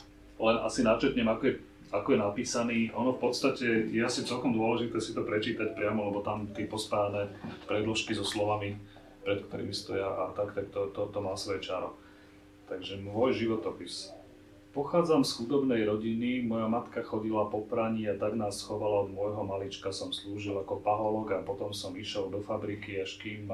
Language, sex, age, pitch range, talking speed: Slovak, male, 40-59, 100-110 Hz, 175 wpm